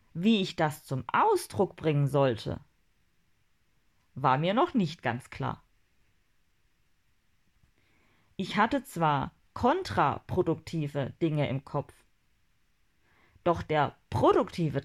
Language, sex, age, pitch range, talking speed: German, female, 40-59, 130-200 Hz, 95 wpm